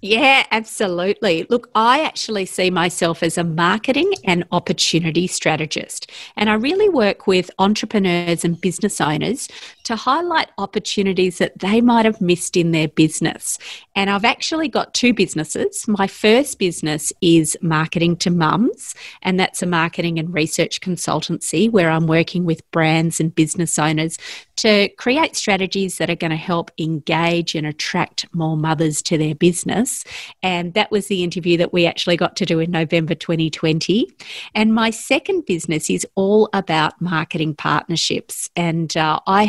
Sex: female